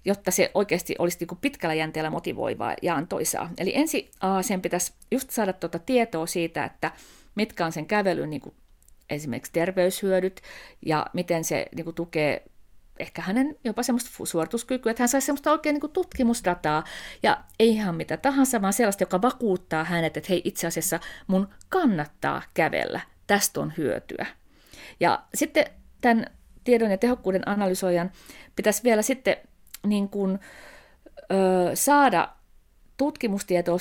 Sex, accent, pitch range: female, native, 165-230 Hz